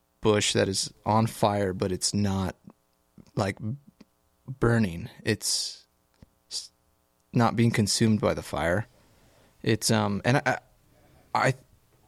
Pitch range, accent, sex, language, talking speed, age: 105-125 Hz, American, male, English, 110 wpm, 20-39